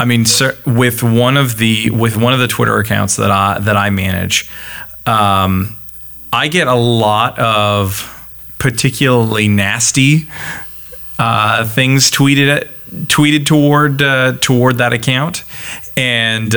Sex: male